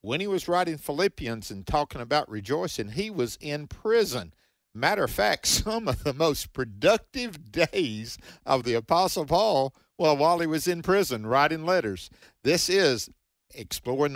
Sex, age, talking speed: male, 50-69, 155 wpm